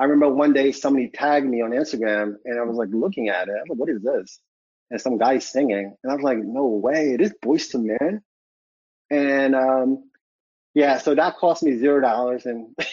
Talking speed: 210 wpm